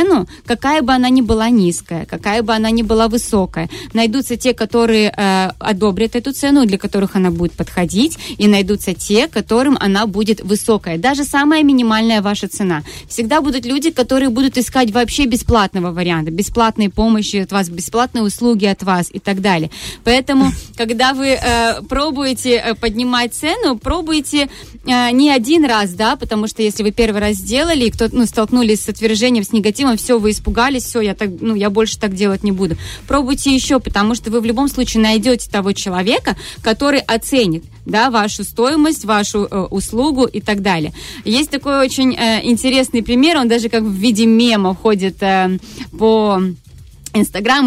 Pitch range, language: 205-255 Hz, Russian